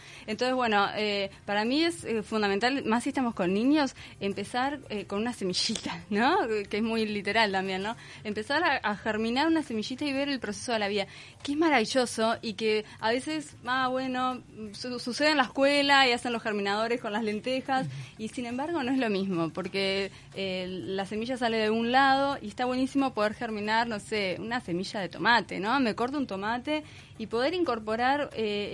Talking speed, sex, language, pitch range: 195 wpm, female, Spanish, 200-255 Hz